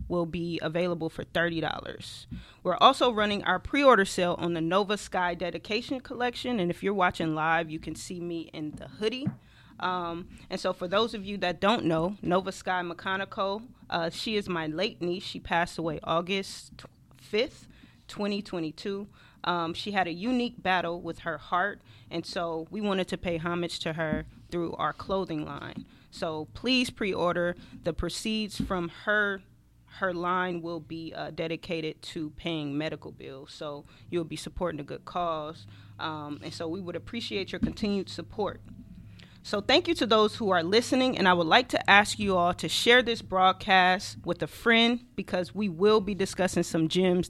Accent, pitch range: American, 165-200 Hz